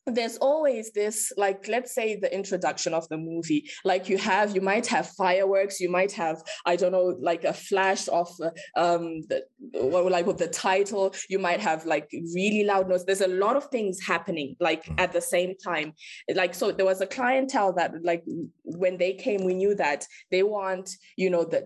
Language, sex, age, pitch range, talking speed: English, female, 20-39, 165-200 Hz, 200 wpm